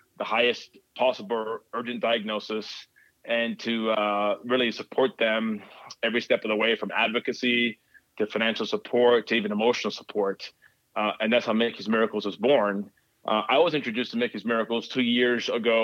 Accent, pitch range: American, 105-115 Hz